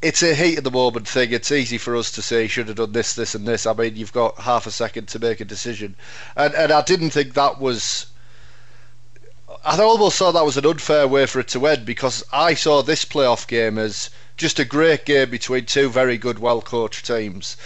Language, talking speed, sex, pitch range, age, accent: English, 230 wpm, male, 120-145 Hz, 30-49, British